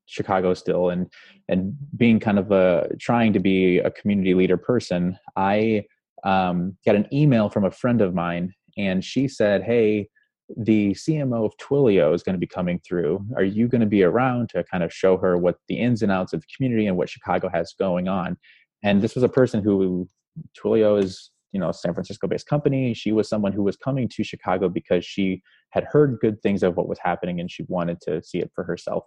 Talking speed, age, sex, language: 215 wpm, 20-39, male, English